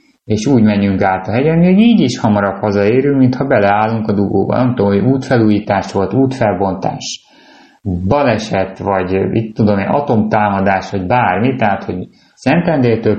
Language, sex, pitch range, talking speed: Hungarian, male, 100-125 Hz, 145 wpm